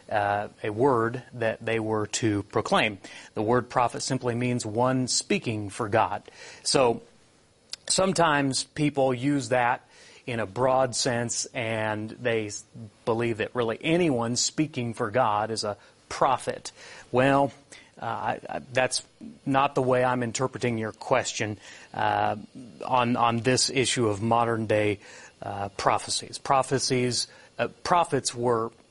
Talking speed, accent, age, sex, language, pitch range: 135 wpm, American, 30-49, male, English, 110-130 Hz